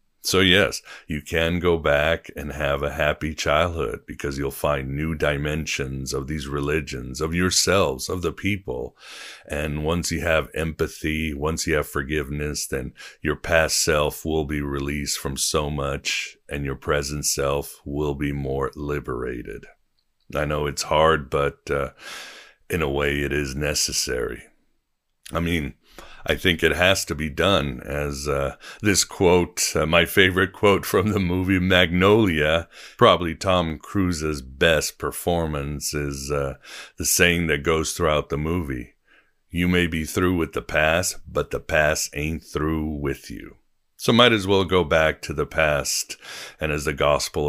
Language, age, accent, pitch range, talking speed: English, 60-79, American, 70-80 Hz, 160 wpm